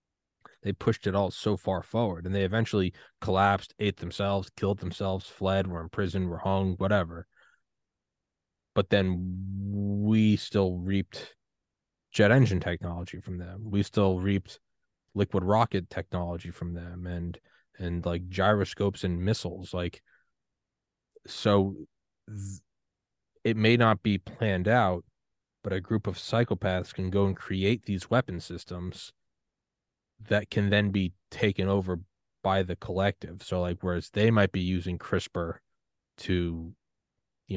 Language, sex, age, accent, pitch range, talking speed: English, male, 20-39, American, 90-110 Hz, 135 wpm